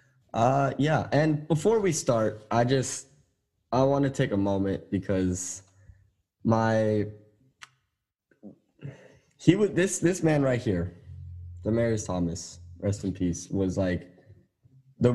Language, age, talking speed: English, 10-29, 125 wpm